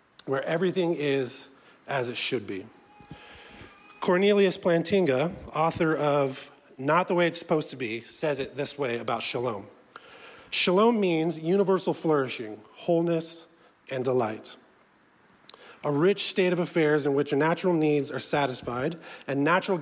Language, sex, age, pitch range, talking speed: English, male, 30-49, 135-170 Hz, 135 wpm